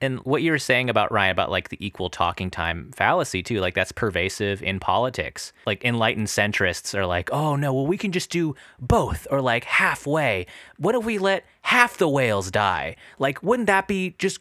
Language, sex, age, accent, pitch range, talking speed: English, male, 30-49, American, 95-140 Hz, 205 wpm